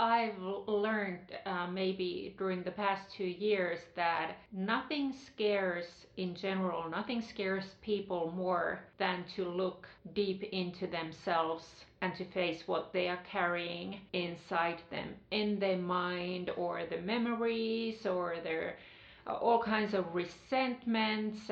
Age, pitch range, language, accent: 40-59, 180-210 Hz, Finnish, native